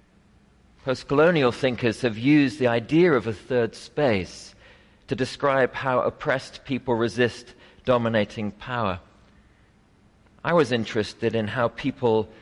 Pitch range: 105-130 Hz